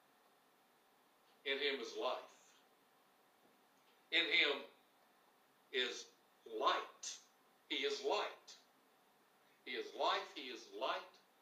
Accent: American